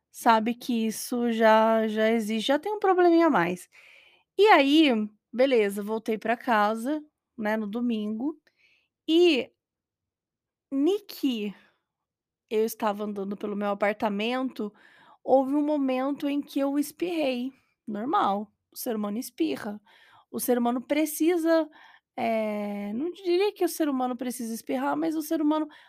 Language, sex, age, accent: Portuguese, female, 20-39, Brazilian